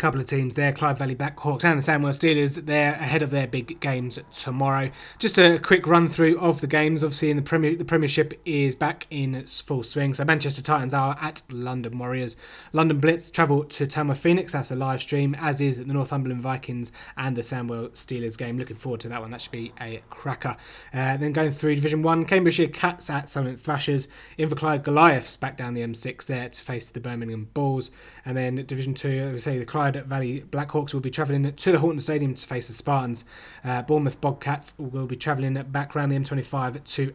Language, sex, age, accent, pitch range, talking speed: English, male, 20-39, British, 125-150 Hz, 210 wpm